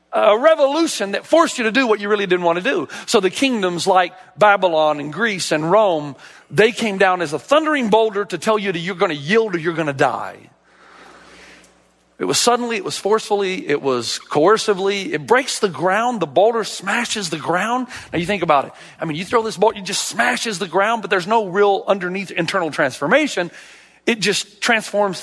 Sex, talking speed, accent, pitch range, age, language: male, 205 wpm, American, 170-230 Hz, 40-59, English